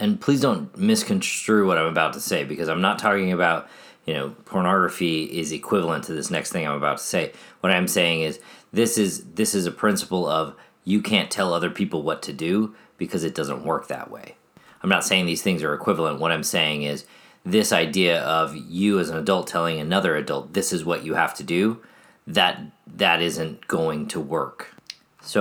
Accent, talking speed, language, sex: American, 205 wpm, English, male